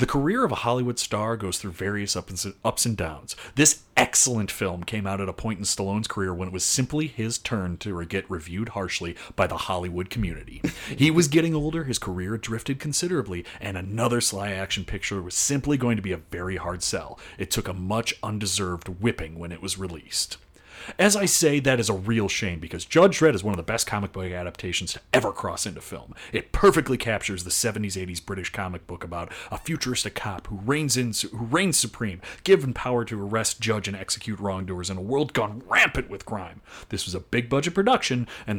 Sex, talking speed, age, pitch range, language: male, 205 wpm, 30-49, 95-120 Hz, English